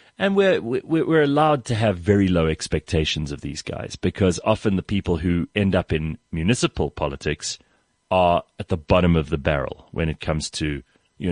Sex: male